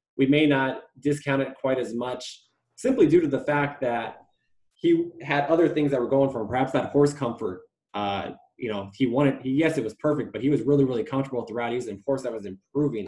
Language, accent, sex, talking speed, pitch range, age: English, American, male, 235 wpm, 115-140 Hz, 20-39